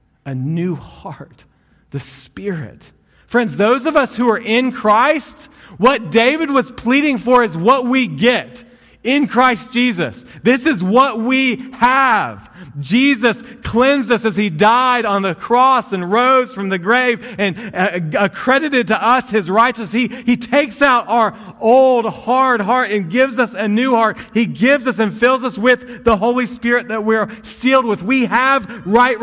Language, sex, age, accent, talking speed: English, male, 40-59, American, 165 wpm